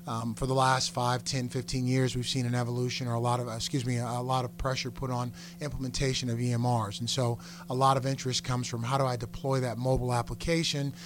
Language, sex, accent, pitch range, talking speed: English, male, American, 125-145 Hz, 235 wpm